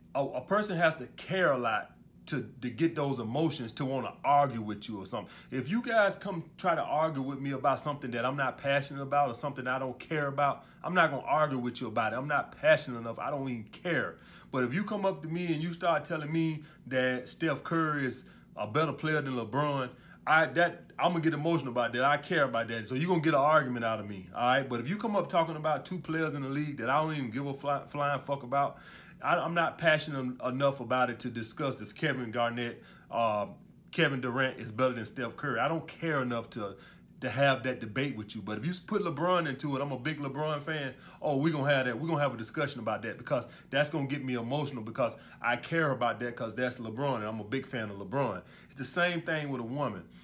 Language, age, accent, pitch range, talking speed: English, 30-49, American, 125-160 Hz, 250 wpm